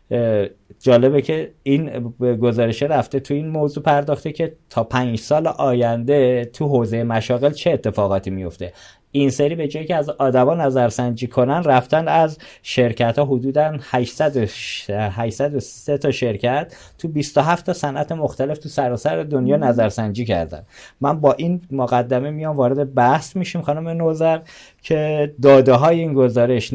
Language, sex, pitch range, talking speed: Persian, male, 115-150 Hz, 145 wpm